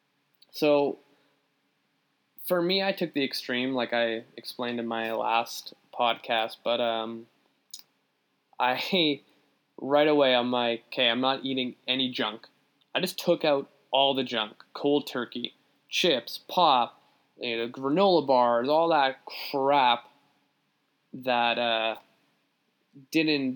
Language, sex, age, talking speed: English, male, 20-39, 120 wpm